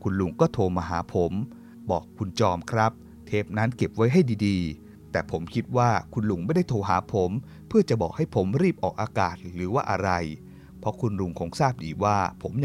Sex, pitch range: male, 90-120 Hz